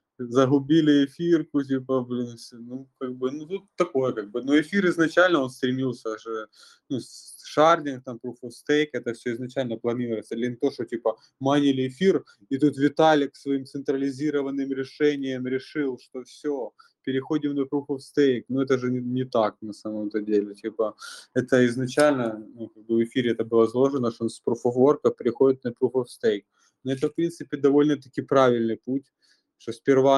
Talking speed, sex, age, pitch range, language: 175 wpm, male, 20-39, 115-140 Hz, Russian